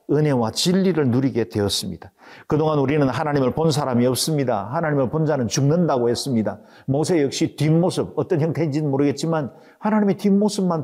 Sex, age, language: male, 50-69, Korean